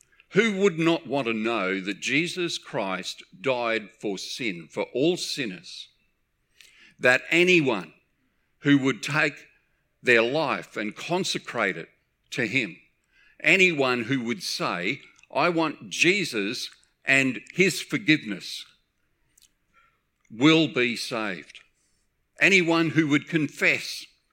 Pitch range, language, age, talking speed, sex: 140-185 Hz, English, 50-69, 110 wpm, male